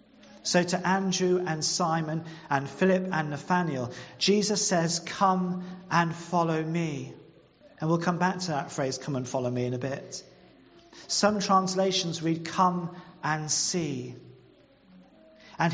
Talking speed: 135 wpm